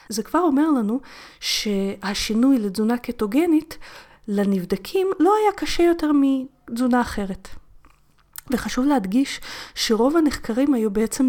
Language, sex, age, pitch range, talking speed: Hebrew, female, 30-49, 190-260 Hz, 105 wpm